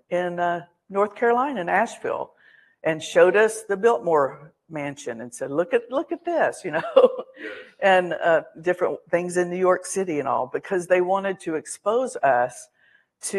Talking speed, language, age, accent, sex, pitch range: 170 wpm, English, 60-79, American, female, 160-220 Hz